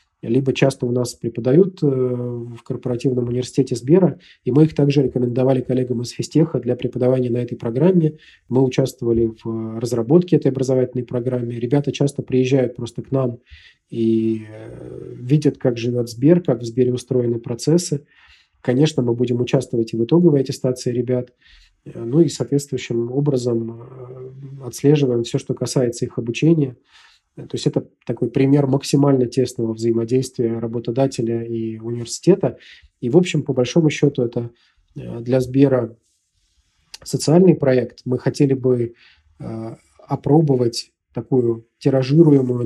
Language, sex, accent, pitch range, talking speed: Russian, male, native, 120-140 Hz, 130 wpm